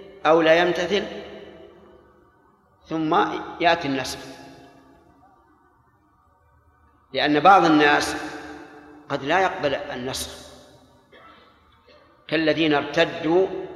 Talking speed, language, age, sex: 65 wpm, Arabic, 50-69, male